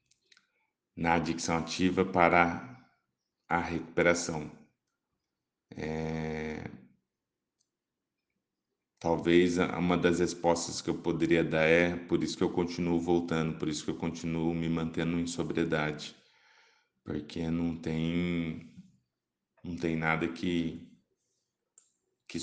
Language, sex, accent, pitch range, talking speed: Portuguese, male, Brazilian, 80-90 Hz, 105 wpm